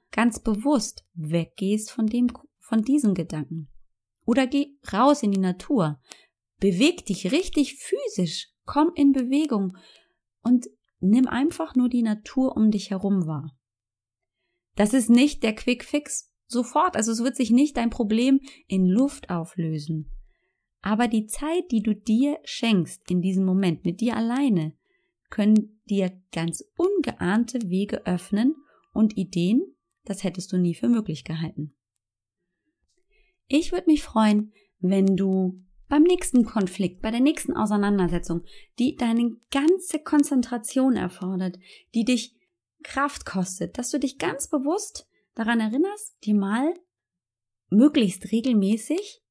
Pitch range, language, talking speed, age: 185-280 Hz, German, 135 wpm, 30-49